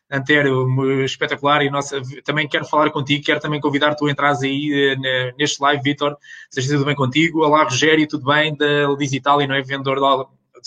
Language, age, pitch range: Portuguese, 20-39, 140-160 Hz